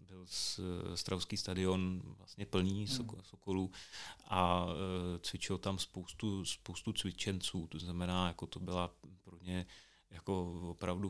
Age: 30-49